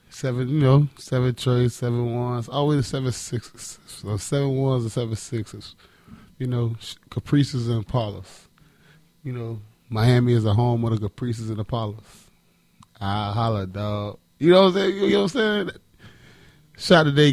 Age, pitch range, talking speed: 20-39, 105-125 Hz, 165 wpm